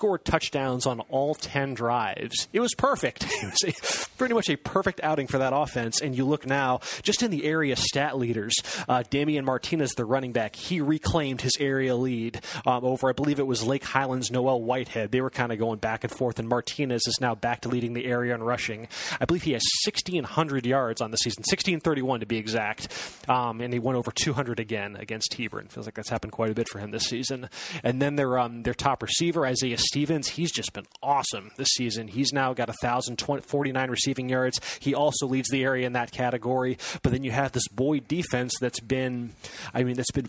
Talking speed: 220 wpm